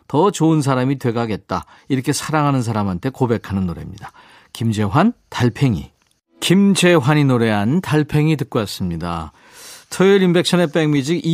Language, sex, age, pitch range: Korean, male, 40-59, 110-170 Hz